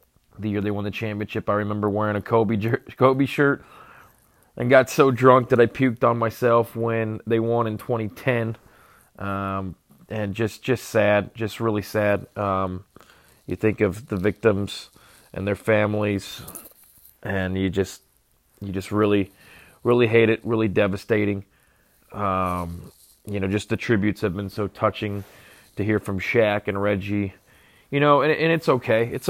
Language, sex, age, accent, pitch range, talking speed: English, male, 30-49, American, 100-120 Hz, 160 wpm